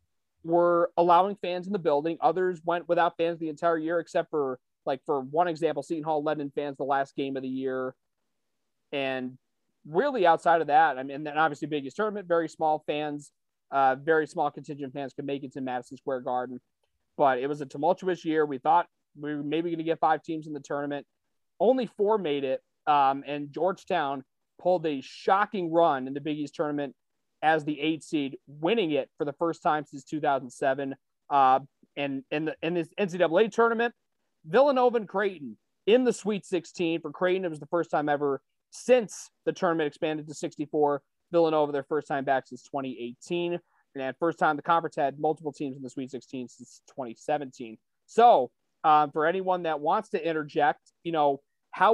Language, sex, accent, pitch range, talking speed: English, male, American, 140-175 Hz, 190 wpm